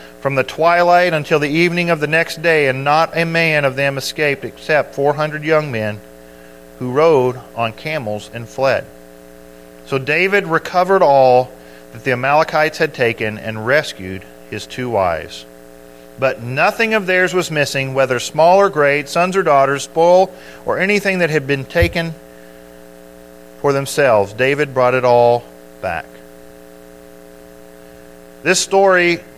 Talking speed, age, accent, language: 145 wpm, 40-59, American, English